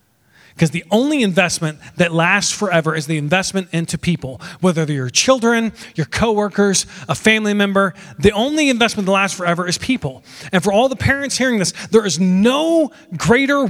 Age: 30-49